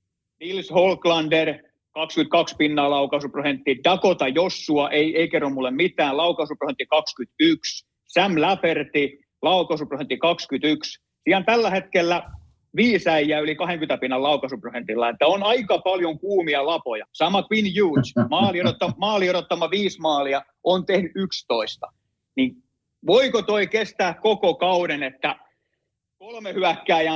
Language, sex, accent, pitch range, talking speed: Finnish, male, native, 140-185 Hz, 115 wpm